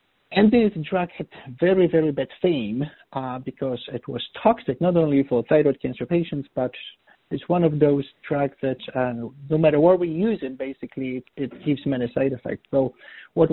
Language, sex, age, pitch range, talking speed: English, male, 50-69, 140-180 Hz, 185 wpm